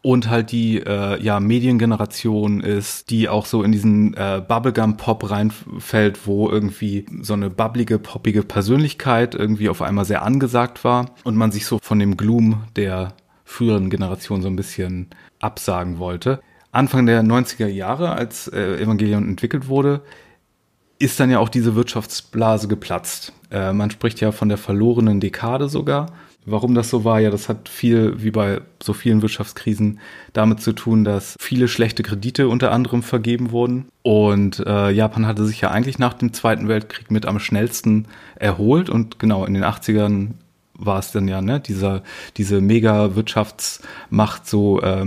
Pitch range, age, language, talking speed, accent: 105-120 Hz, 30-49, German, 160 wpm, German